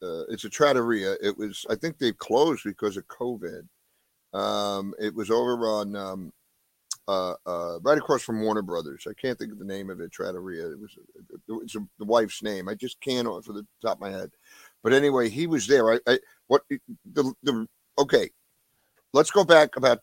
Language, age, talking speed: English, 50-69, 200 wpm